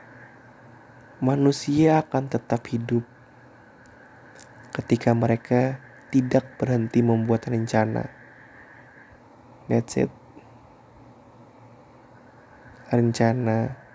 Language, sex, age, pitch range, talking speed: Indonesian, male, 20-39, 115-130 Hz, 55 wpm